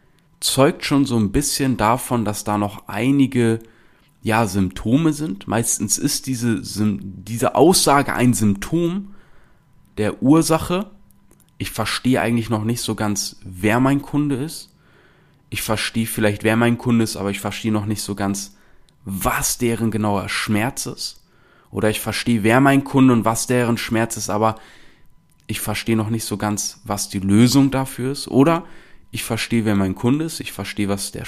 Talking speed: 165 wpm